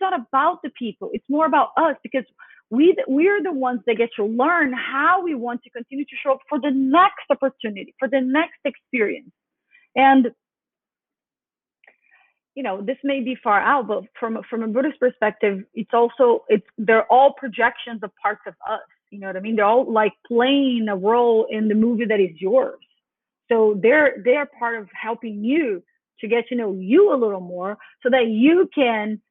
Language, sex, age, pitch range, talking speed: English, female, 30-49, 220-270 Hz, 195 wpm